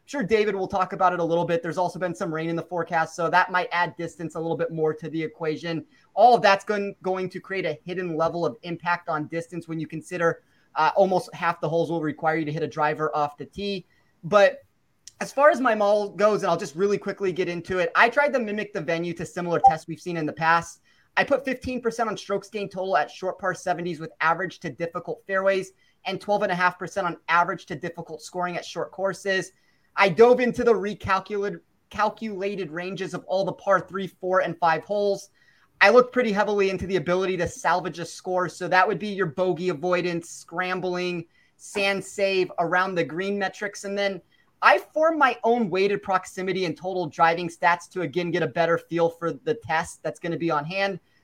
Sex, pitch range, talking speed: male, 170-200 Hz, 215 wpm